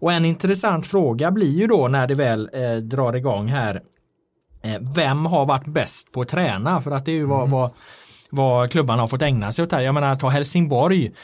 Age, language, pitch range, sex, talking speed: 30-49, Swedish, 120-165 Hz, male, 225 wpm